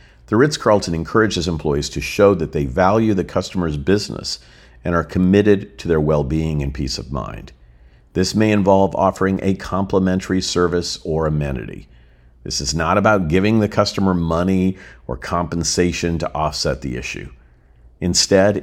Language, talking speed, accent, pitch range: English, 155 wpm, American, 65-105 Hz